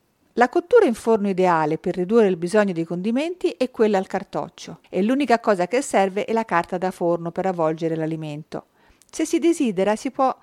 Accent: native